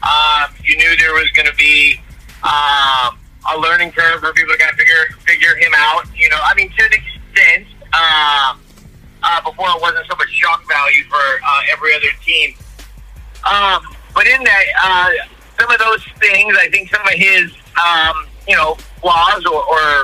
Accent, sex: American, male